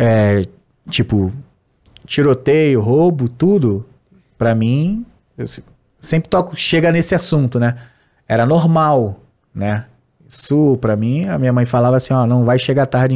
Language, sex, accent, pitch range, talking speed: Portuguese, male, Brazilian, 125-195 Hz, 135 wpm